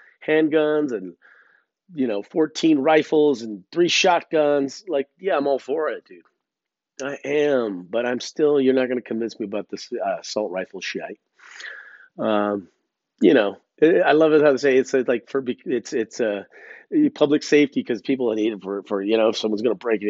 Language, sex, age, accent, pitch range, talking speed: English, male, 40-59, American, 120-155 Hz, 195 wpm